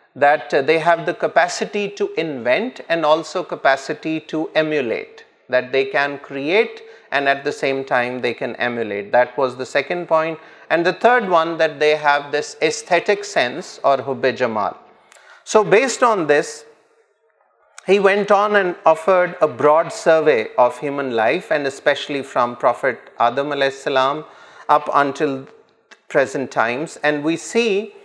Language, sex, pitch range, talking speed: Urdu, male, 145-195 Hz, 150 wpm